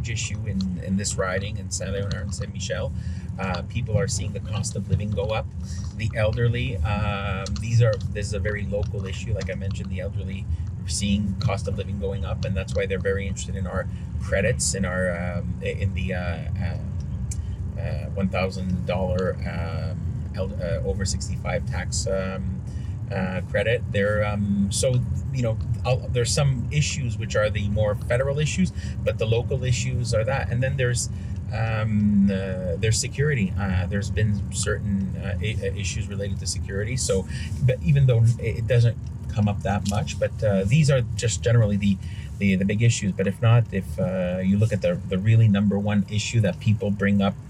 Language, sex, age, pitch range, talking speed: English, male, 30-49, 95-110 Hz, 185 wpm